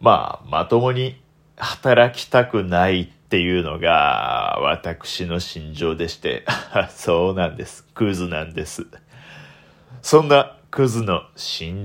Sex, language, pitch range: male, Japanese, 90-130 Hz